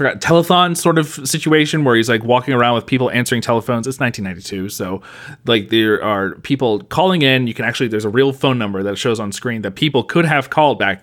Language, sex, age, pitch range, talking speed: English, male, 30-49, 100-130 Hz, 220 wpm